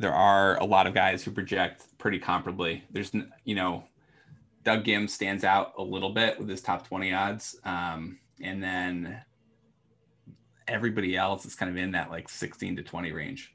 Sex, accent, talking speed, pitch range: male, American, 175 wpm, 90-110 Hz